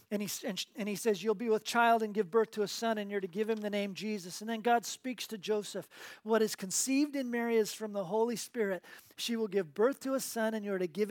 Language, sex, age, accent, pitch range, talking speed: English, male, 40-59, American, 195-240 Hz, 265 wpm